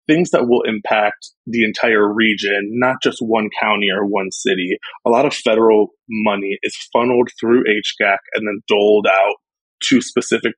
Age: 20-39